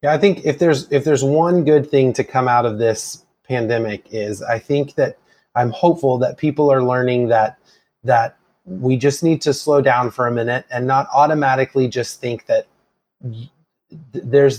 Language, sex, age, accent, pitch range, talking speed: English, male, 30-49, American, 125-150 Hz, 180 wpm